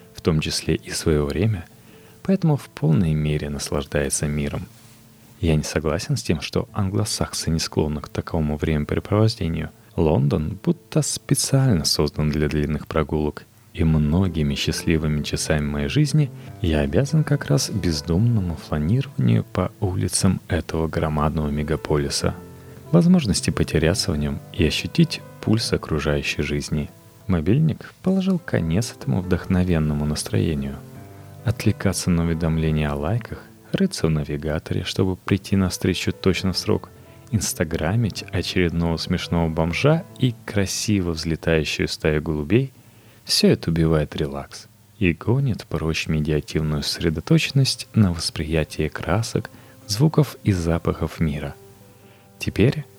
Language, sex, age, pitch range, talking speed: Russian, male, 30-49, 80-110 Hz, 115 wpm